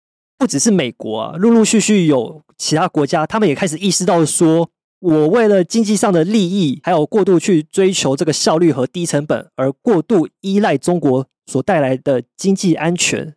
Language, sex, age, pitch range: Chinese, male, 20-39, 140-190 Hz